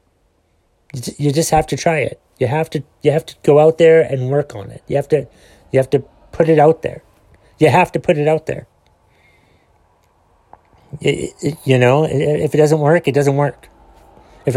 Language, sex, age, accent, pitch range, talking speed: English, male, 30-49, American, 115-150 Hz, 200 wpm